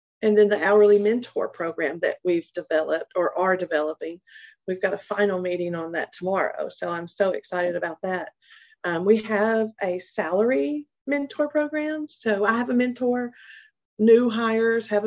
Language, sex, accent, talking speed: English, female, American, 165 wpm